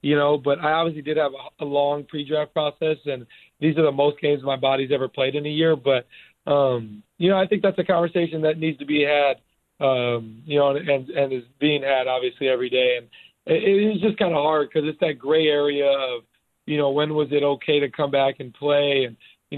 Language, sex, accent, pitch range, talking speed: English, male, American, 130-150 Hz, 235 wpm